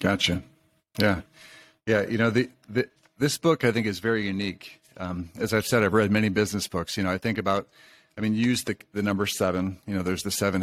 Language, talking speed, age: English, 225 wpm, 40-59